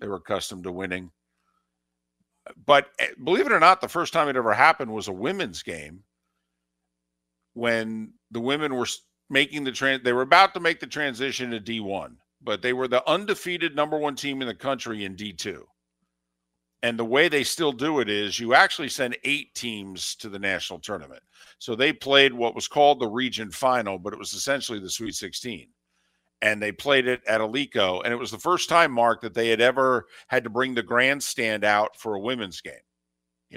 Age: 50-69